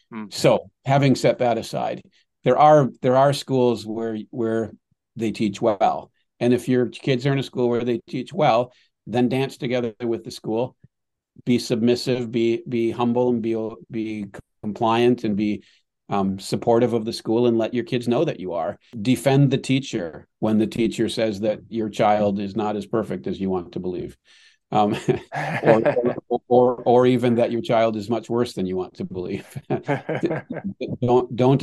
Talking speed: 180 wpm